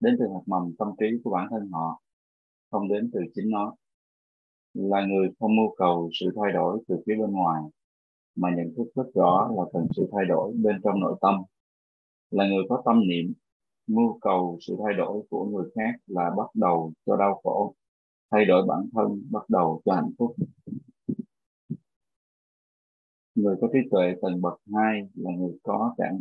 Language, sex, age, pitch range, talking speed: Vietnamese, male, 20-39, 85-110 Hz, 185 wpm